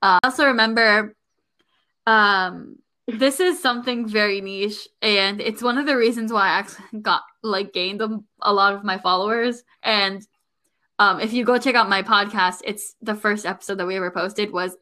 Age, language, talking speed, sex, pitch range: 10-29, English, 180 wpm, female, 195-235 Hz